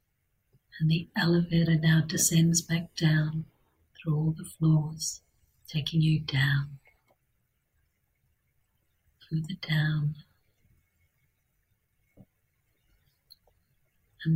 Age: 50-69